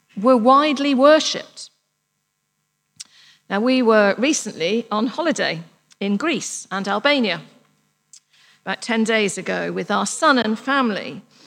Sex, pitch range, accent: female, 200-260 Hz, British